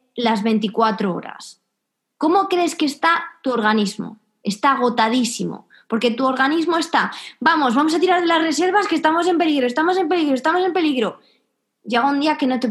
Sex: female